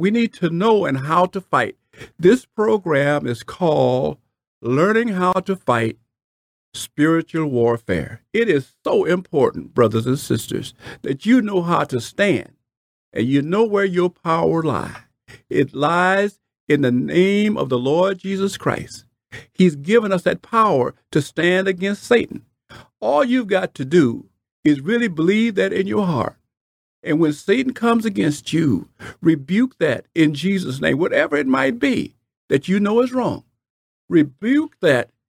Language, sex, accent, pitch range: English, male, American, 140-215 Hz